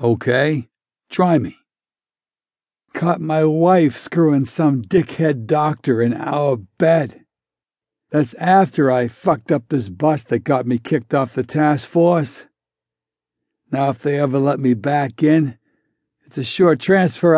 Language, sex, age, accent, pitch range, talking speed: English, male, 60-79, American, 130-170 Hz, 140 wpm